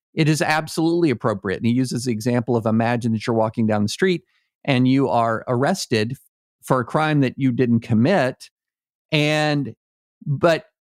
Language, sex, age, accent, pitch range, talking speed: English, male, 50-69, American, 115-150 Hz, 165 wpm